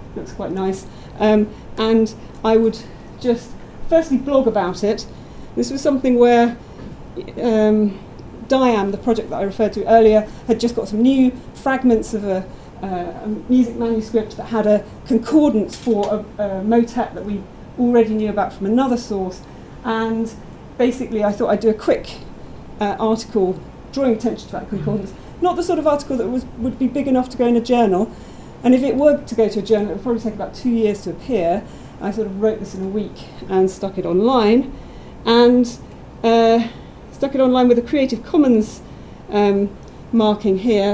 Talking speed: 185 wpm